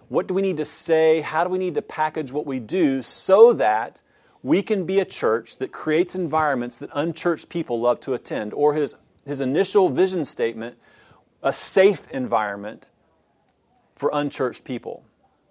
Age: 40-59